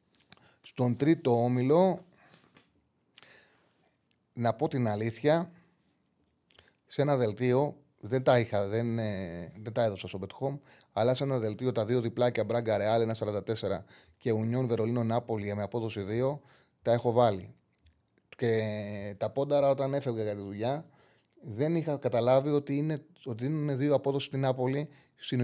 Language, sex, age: Greek, male, 30-49